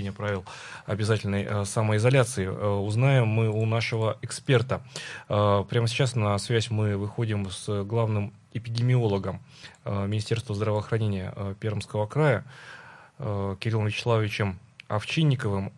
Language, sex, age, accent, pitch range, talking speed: Russian, male, 20-39, native, 100-125 Hz, 90 wpm